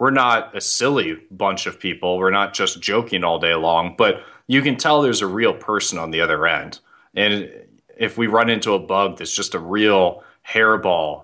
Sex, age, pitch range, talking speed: male, 30-49, 90-105 Hz, 205 wpm